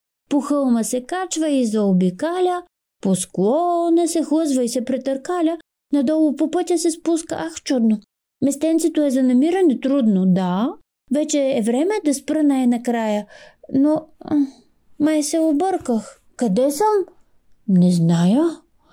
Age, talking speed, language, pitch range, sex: 30-49, 125 wpm, Bulgarian, 275-345 Hz, female